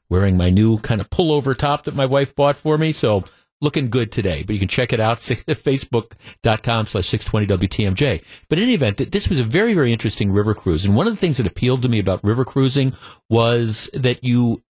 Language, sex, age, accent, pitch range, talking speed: English, male, 50-69, American, 110-145 Hz, 220 wpm